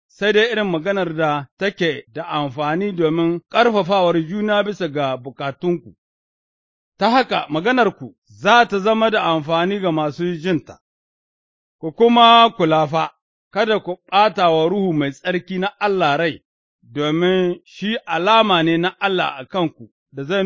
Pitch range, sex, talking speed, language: 155-205 Hz, male, 125 wpm, English